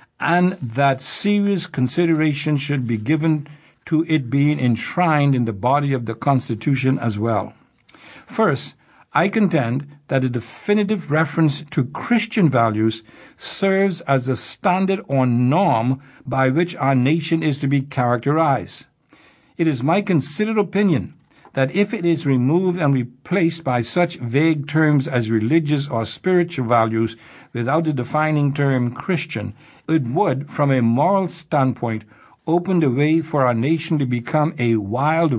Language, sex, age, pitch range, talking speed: English, male, 60-79, 125-165 Hz, 145 wpm